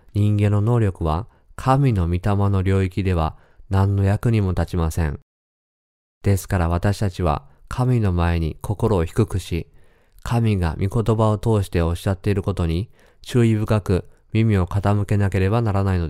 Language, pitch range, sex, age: Japanese, 85-110 Hz, male, 20-39